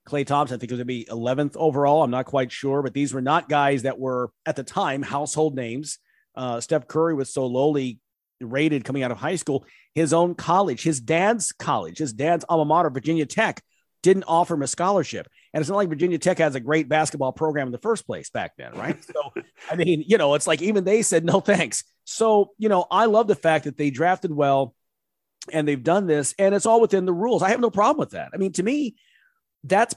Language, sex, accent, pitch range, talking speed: English, male, American, 140-200 Hz, 230 wpm